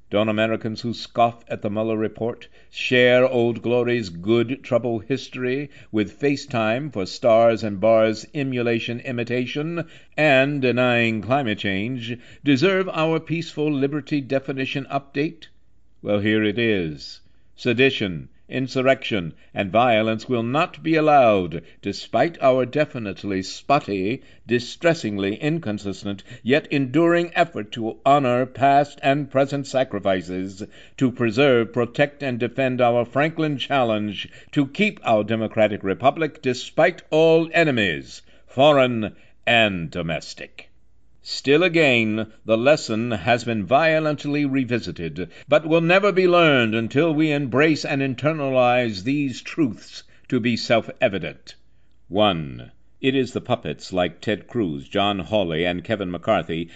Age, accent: 60-79, American